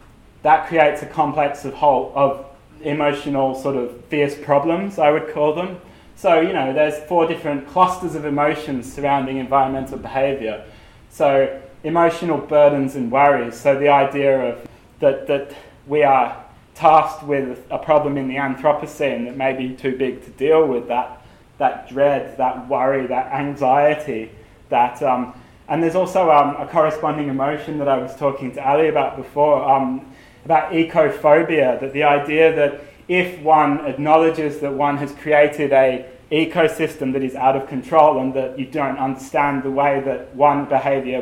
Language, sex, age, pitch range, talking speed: English, male, 20-39, 135-155 Hz, 160 wpm